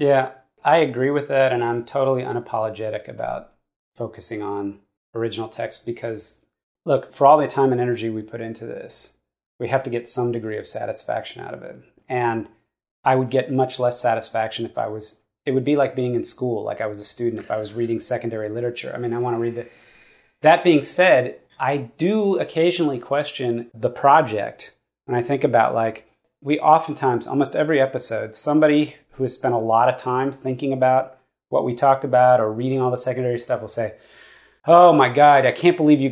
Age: 30-49